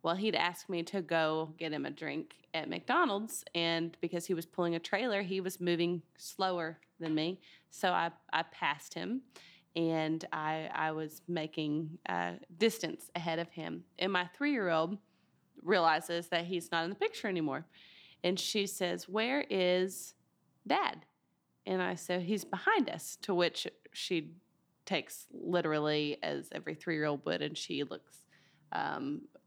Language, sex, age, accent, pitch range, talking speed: English, female, 20-39, American, 160-205 Hz, 155 wpm